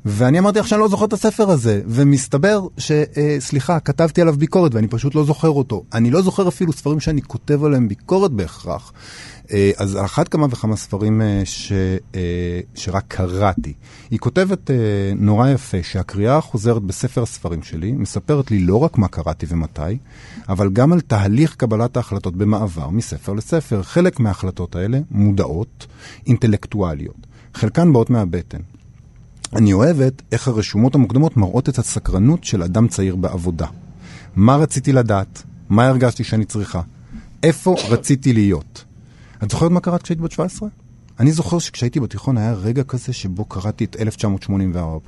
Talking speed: 150 wpm